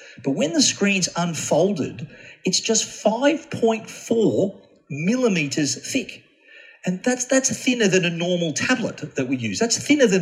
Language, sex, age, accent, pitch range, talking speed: English, male, 40-59, Australian, 130-180 Hz, 140 wpm